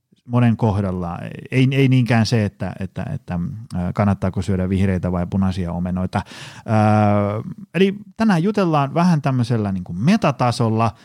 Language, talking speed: Finnish, 130 wpm